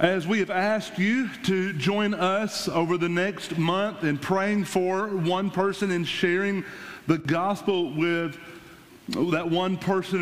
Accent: American